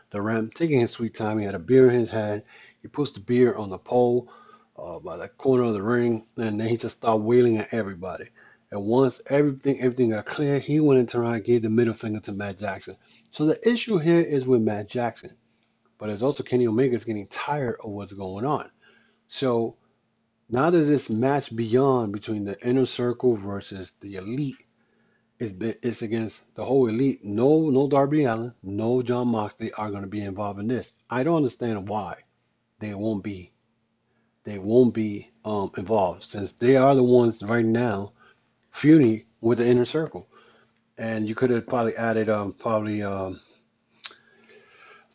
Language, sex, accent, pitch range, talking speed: English, male, American, 110-130 Hz, 185 wpm